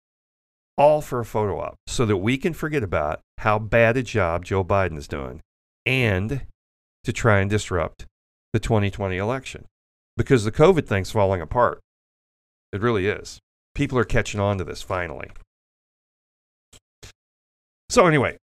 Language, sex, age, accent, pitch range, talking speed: English, male, 40-59, American, 90-120 Hz, 145 wpm